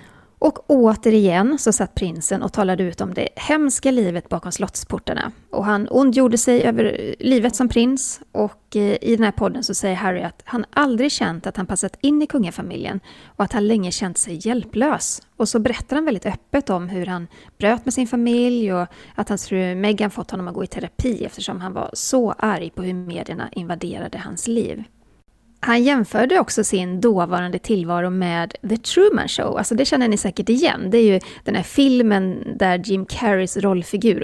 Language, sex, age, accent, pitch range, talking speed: Swedish, female, 30-49, native, 185-240 Hz, 190 wpm